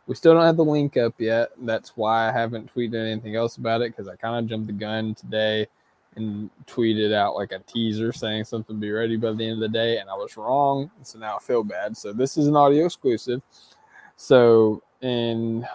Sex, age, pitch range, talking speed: male, 20-39, 105-115 Hz, 220 wpm